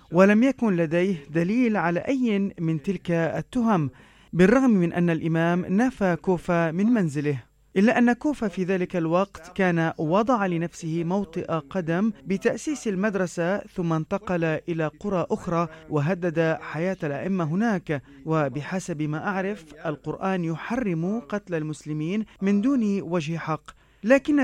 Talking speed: 125 wpm